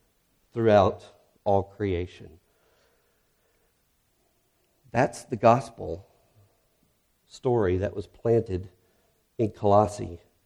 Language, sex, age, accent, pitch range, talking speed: English, male, 50-69, American, 95-125 Hz, 70 wpm